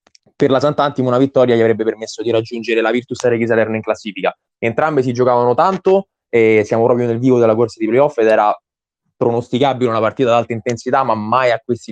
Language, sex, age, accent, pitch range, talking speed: Italian, male, 20-39, native, 120-150 Hz, 205 wpm